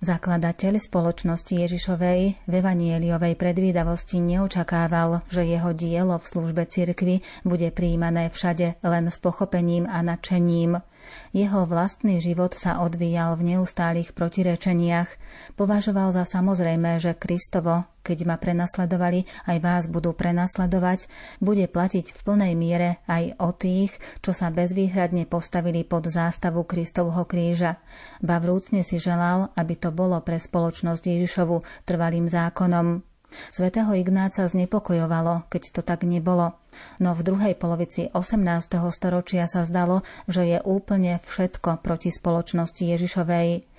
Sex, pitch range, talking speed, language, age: female, 170-185 Hz, 125 wpm, Slovak, 30-49